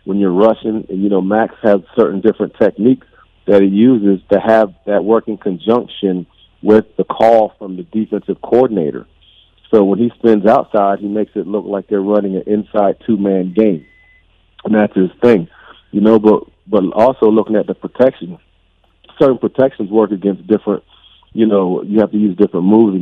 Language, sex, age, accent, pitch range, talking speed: English, male, 40-59, American, 100-115 Hz, 180 wpm